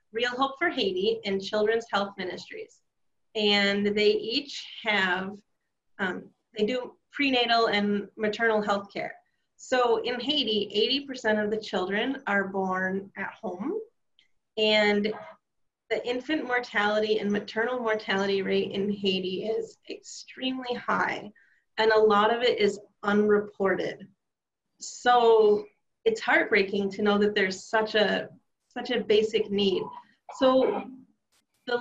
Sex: female